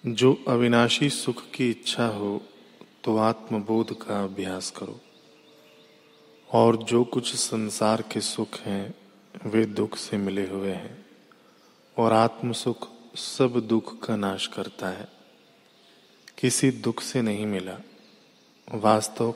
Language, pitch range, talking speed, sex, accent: Hindi, 110-125 Hz, 120 wpm, male, native